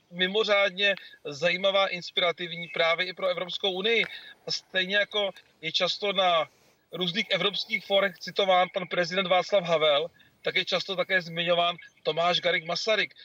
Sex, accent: male, native